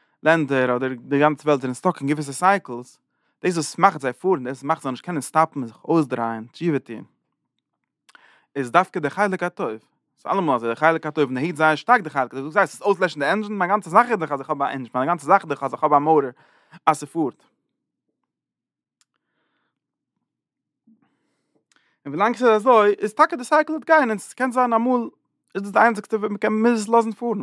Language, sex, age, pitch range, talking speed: English, male, 30-49, 135-200 Hz, 90 wpm